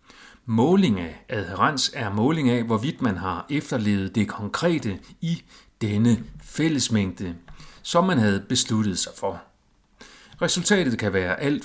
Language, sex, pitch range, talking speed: Danish, male, 100-140 Hz, 130 wpm